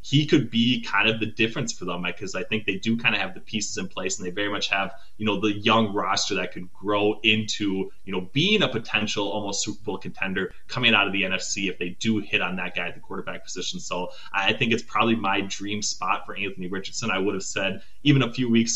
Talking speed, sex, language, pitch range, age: 255 wpm, male, English, 100-115 Hz, 20-39